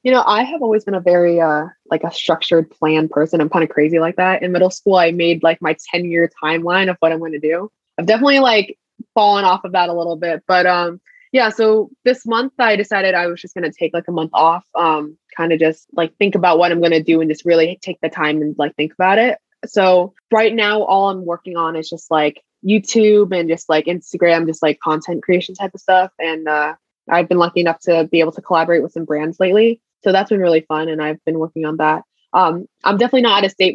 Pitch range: 165-200 Hz